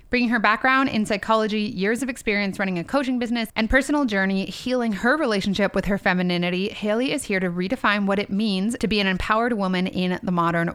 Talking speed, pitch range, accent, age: 205 wpm, 185-230 Hz, American, 30-49